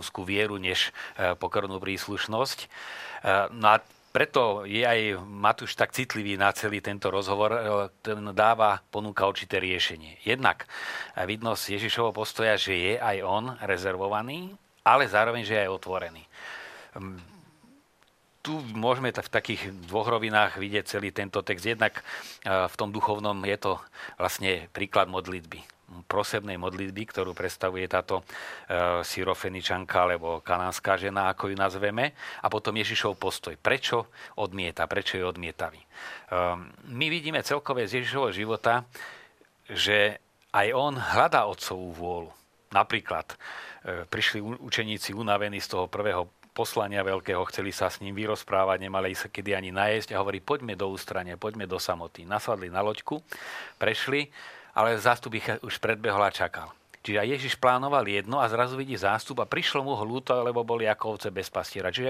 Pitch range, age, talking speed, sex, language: 95-115 Hz, 40-59, 140 wpm, male, Slovak